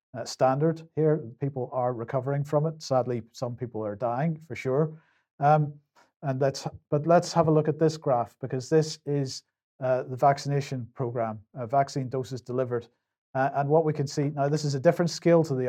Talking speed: 195 wpm